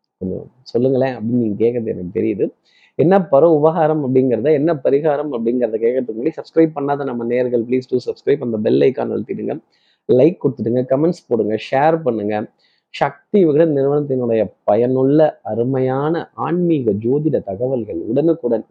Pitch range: 120-165 Hz